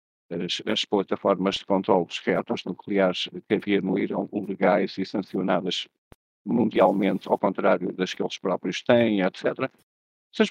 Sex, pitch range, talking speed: male, 100-140 Hz, 130 wpm